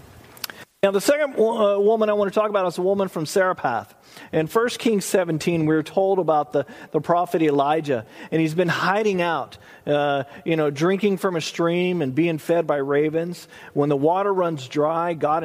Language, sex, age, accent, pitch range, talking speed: English, male, 40-59, American, 155-200 Hz, 185 wpm